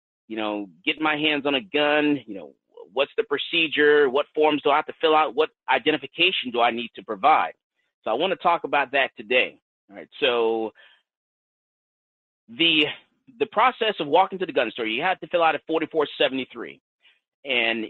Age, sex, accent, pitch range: 30-49, male, American, 140-180 Hz